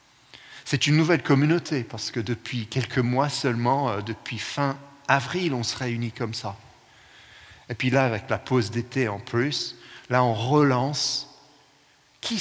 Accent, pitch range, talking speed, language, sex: French, 110-140 Hz, 150 wpm, French, male